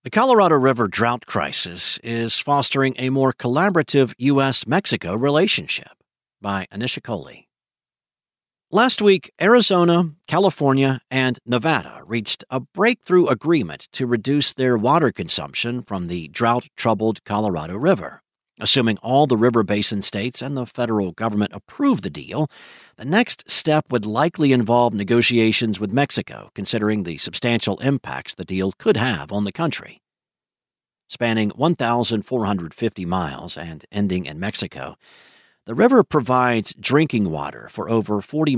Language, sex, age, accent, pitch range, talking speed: English, male, 50-69, American, 105-135 Hz, 130 wpm